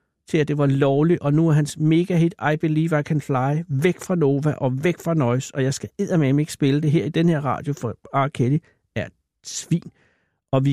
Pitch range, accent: 130-155 Hz, native